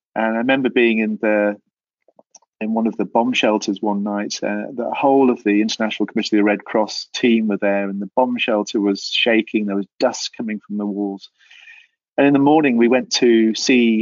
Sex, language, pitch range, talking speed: male, English, 100-115 Hz, 210 wpm